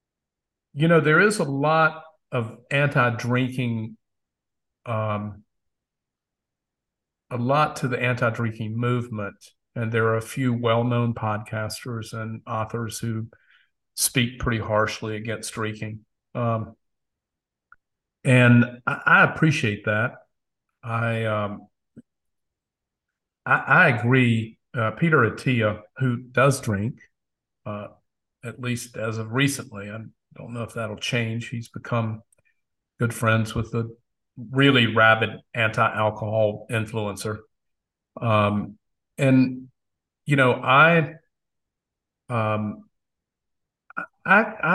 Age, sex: 50-69, male